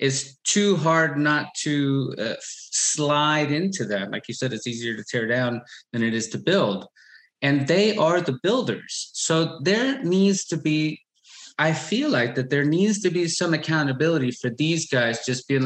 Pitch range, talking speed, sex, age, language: 130-180 Hz, 180 wpm, male, 20-39, English